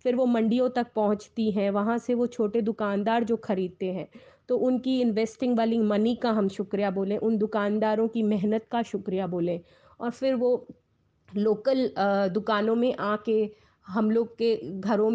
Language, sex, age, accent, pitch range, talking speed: Hindi, female, 30-49, native, 205-235 Hz, 160 wpm